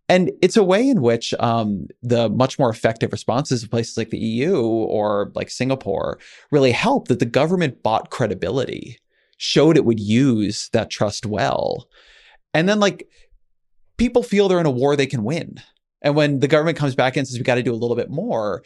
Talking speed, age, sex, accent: 200 wpm, 30-49, male, American